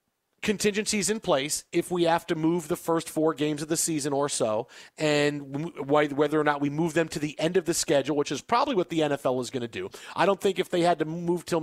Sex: male